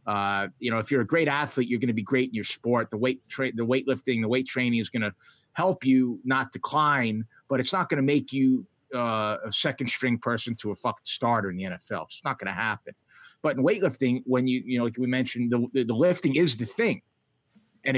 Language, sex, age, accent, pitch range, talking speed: English, male, 30-49, American, 120-145 Hz, 230 wpm